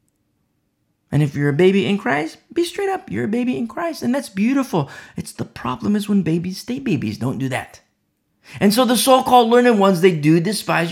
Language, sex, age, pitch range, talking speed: English, male, 40-59, 130-215 Hz, 210 wpm